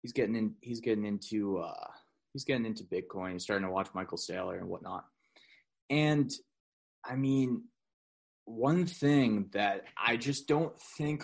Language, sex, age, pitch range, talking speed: English, male, 20-39, 110-150 Hz, 155 wpm